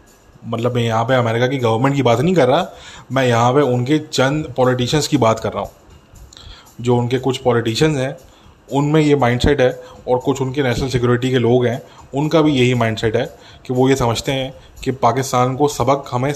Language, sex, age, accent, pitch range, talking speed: English, male, 20-39, Indian, 120-140 Hz, 200 wpm